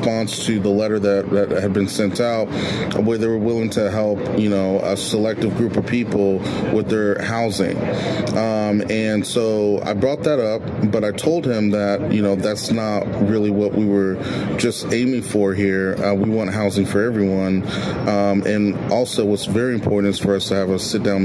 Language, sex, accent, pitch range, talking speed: English, male, American, 100-115 Hz, 195 wpm